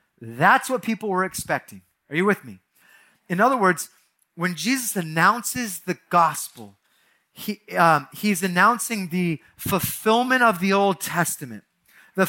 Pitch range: 160-200 Hz